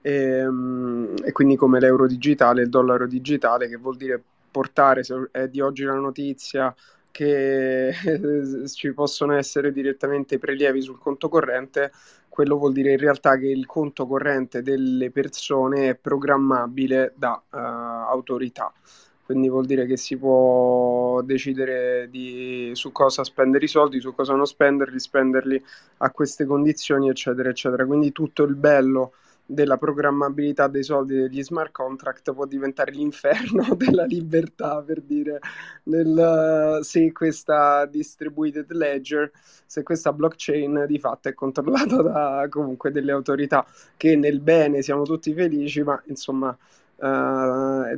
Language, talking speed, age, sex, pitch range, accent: Italian, 140 wpm, 20-39, male, 130-145 Hz, native